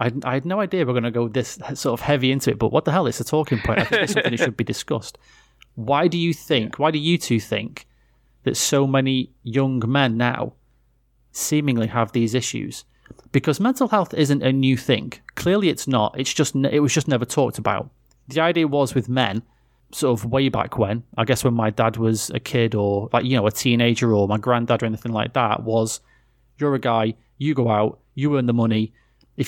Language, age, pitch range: English, 30-49, 120-150 Hz